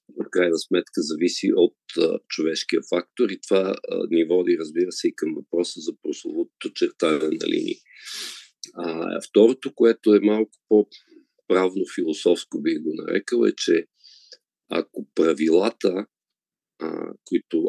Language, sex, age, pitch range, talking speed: Bulgarian, male, 50-69, 325-375 Hz, 130 wpm